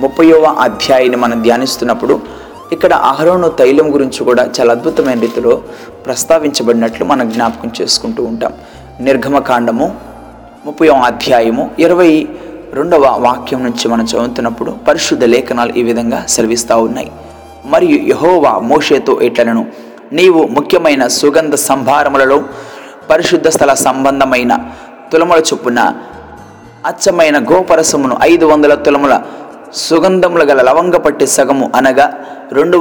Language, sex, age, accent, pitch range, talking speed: Telugu, male, 20-39, native, 135-165 Hz, 100 wpm